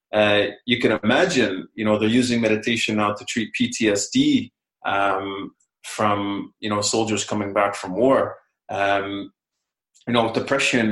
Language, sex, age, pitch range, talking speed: English, male, 30-49, 105-125 Hz, 145 wpm